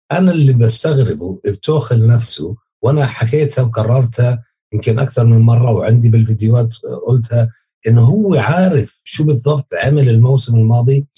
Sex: male